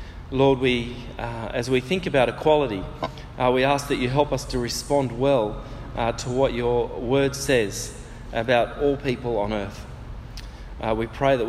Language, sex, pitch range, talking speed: English, male, 115-150 Hz, 170 wpm